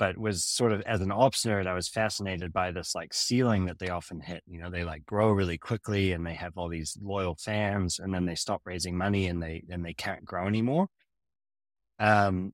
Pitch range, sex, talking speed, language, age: 90-105 Hz, male, 225 wpm, English, 20-39